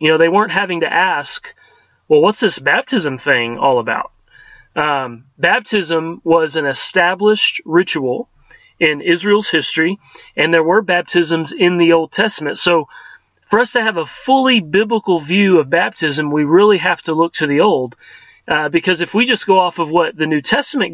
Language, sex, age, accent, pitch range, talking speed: English, male, 30-49, American, 160-210 Hz, 180 wpm